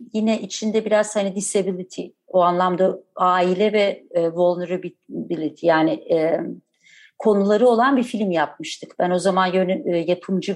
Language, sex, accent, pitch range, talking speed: Turkish, female, native, 180-235 Hz, 135 wpm